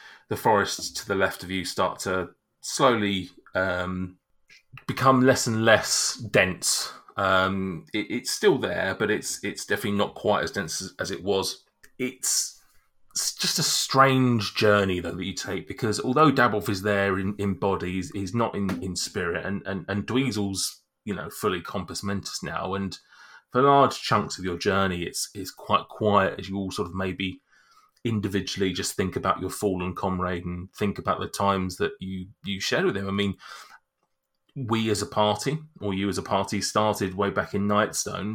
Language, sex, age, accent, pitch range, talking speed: English, male, 30-49, British, 95-105 Hz, 180 wpm